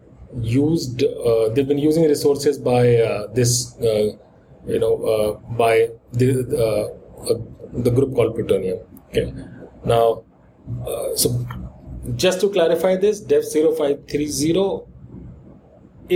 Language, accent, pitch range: English, Indian, 120-155 Hz